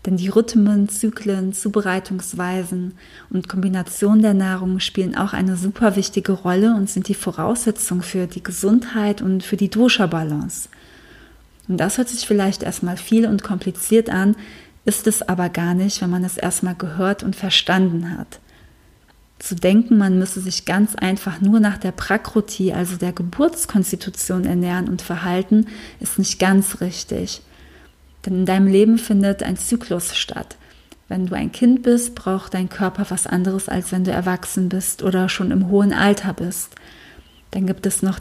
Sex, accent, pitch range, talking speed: female, German, 185-205 Hz, 160 wpm